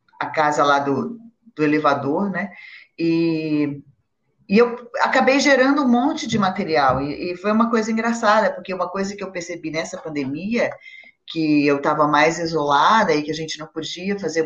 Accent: Brazilian